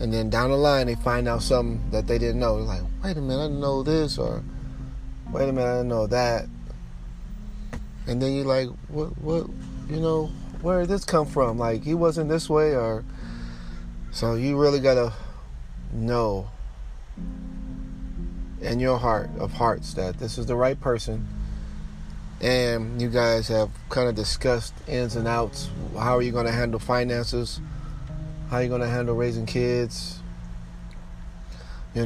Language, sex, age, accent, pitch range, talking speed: English, male, 30-49, American, 95-125 Hz, 165 wpm